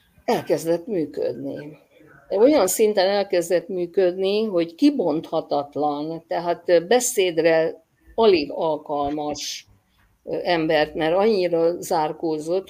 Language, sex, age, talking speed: Hungarian, female, 50-69, 75 wpm